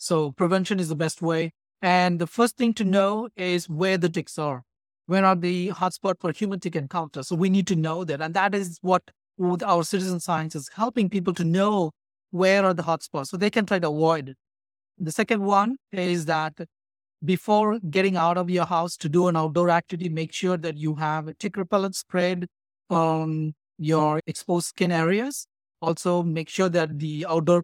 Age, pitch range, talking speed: 50-69, 165-200 Hz, 200 wpm